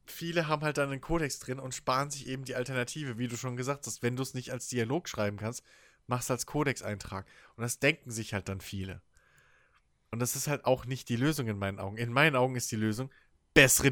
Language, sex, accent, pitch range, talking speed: German, male, German, 125-155 Hz, 235 wpm